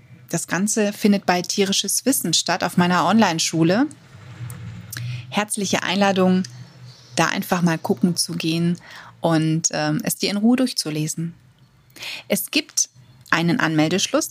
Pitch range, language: 170-205 Hz, German